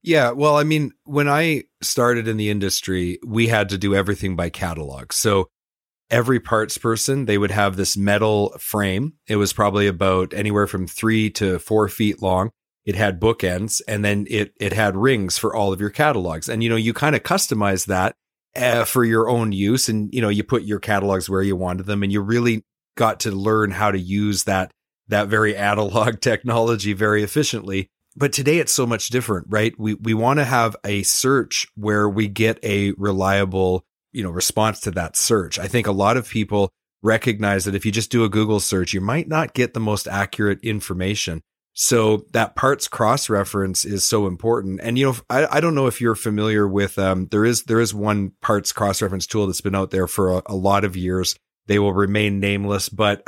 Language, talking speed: English, 205 wpm